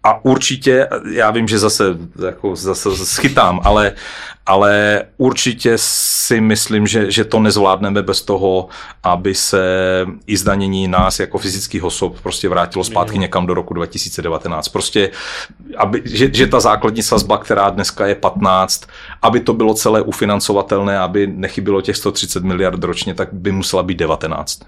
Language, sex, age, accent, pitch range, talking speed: Czech, male, 40-59, native, 95-110 Hz, 150 wpm